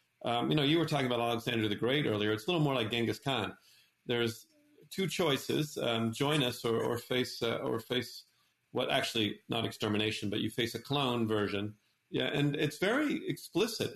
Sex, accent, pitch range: male, American, 110-150 Hz